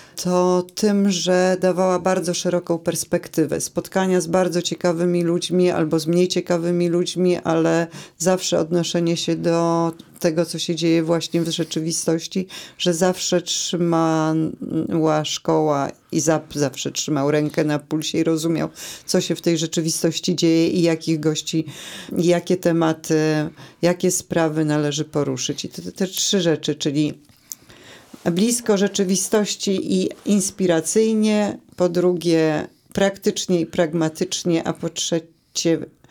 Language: Polish